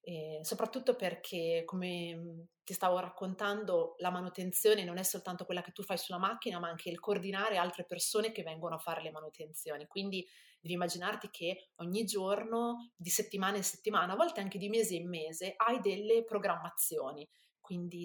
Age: 30-49